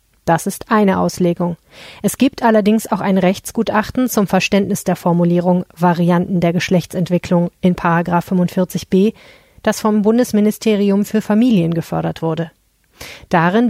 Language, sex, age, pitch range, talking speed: German, female, 30-49, 175-205 Hz, 120 wpm